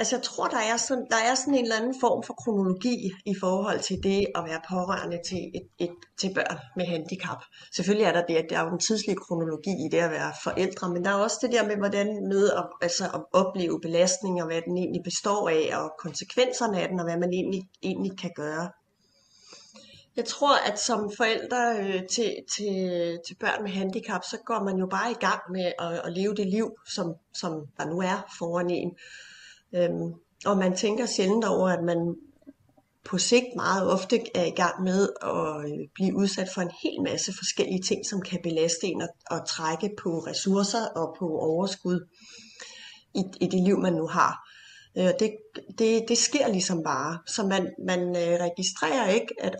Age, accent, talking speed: 30-49, native, 195 wpm